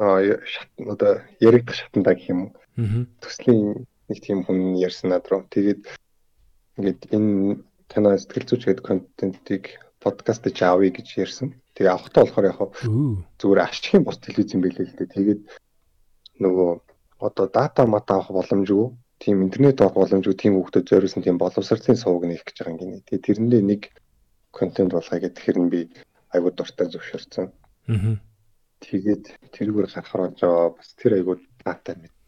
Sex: male